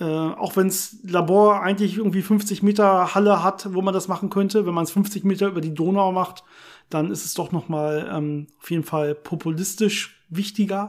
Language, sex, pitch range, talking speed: German, male, 170-205 Hz, 195 wpm